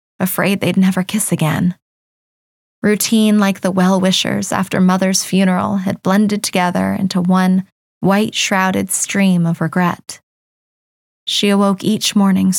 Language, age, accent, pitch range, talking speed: English, 20-39, American, 175-200 Hz, 120 wpm